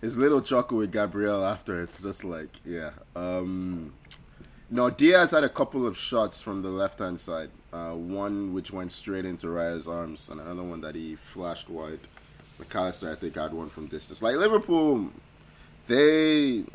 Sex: male